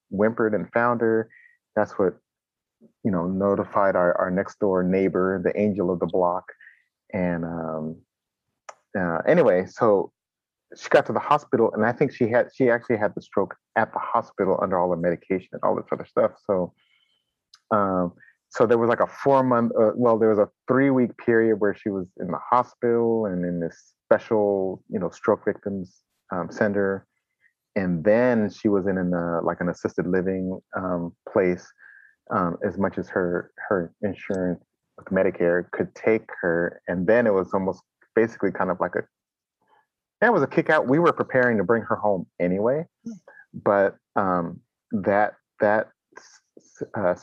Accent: American